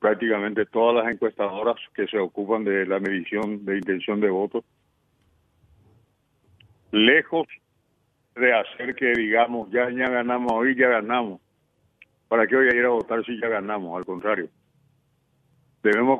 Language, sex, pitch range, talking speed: Spanish, male, 105-130 Hz, 135 wpm